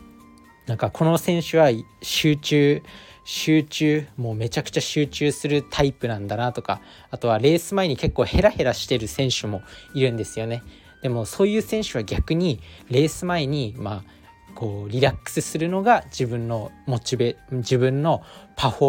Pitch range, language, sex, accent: 110-155 Hz, Japanese, male, native